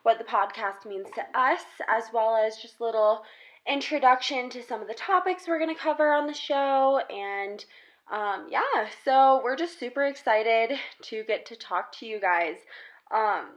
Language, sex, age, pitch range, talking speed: English, female, 20-39, 200-270 Hz, 175 wpm